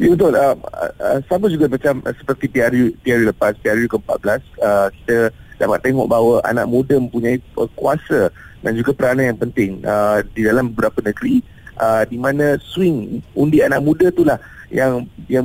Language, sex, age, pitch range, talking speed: Malay, male, 30-49, 120-145 Hz, 165 wpm